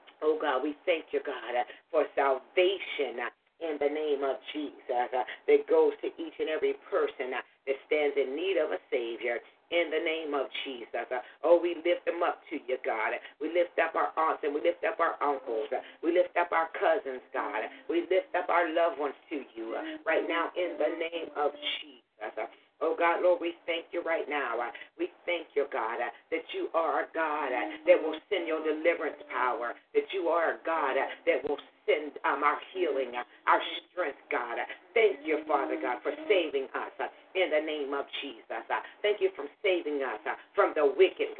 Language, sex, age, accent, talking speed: English, female, 40-59, American, 185 wpm